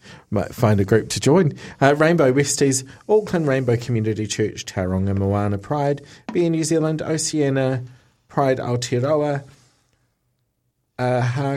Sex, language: male, English